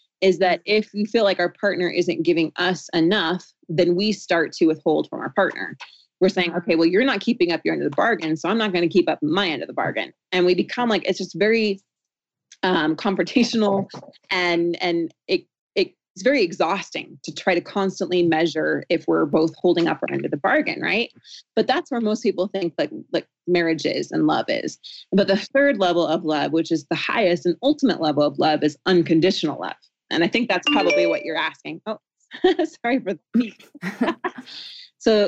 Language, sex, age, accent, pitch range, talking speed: English, female, 30-49, American, 165-200 Hz, 210 wpm